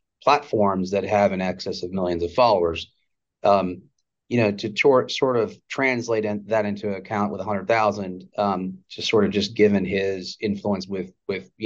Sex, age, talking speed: male, 30-49, 190 wpm